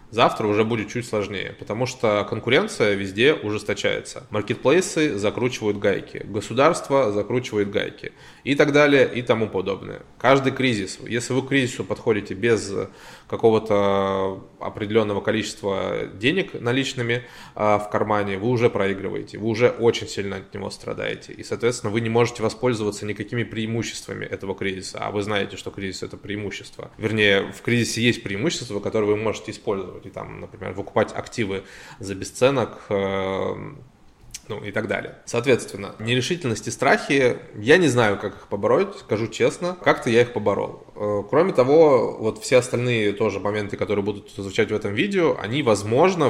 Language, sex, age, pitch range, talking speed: Russian, male, 20-39, 100-120 Hz, 150 wpm